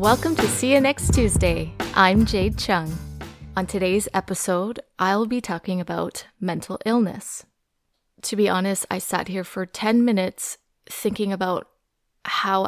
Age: 20-39